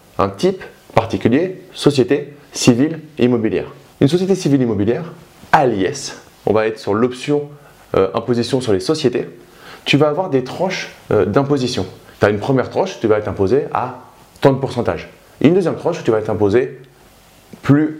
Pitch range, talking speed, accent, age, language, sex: 120-155 Hz, 165 wpm, French, 20-39, French, male